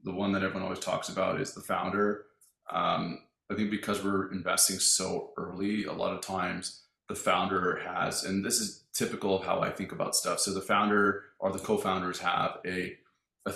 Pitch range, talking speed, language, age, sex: 95-105 Hz, 195 wpm, English, 20-39, male